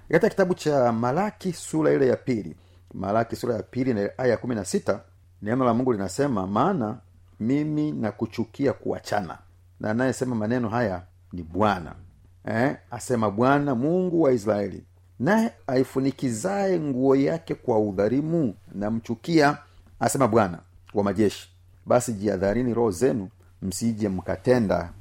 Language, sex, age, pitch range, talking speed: Swahili, male, 40-59, 90-125 Hz, 130 wpm